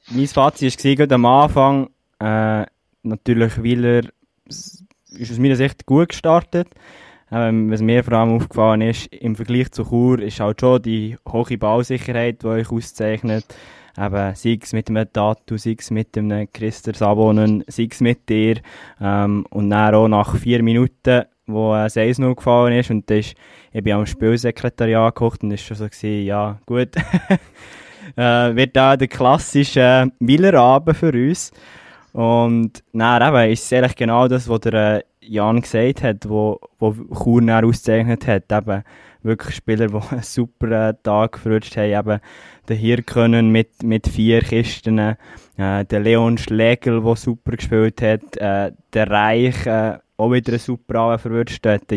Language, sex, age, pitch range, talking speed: German, male, 20-39, 110-120 Hz, 160 wpm